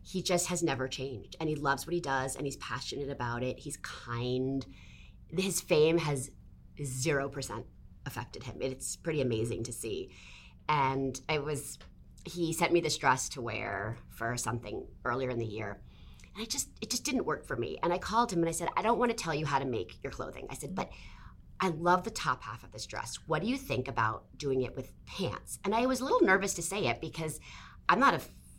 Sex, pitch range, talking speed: female, 125-170 Hz, 225 wpm